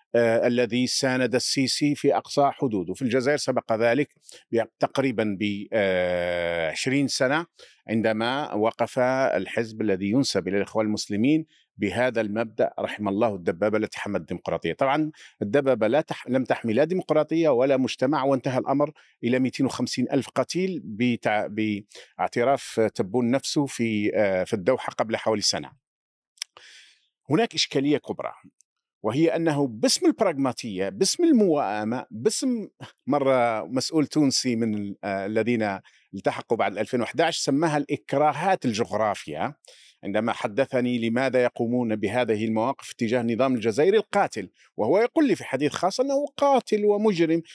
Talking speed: 120 wpm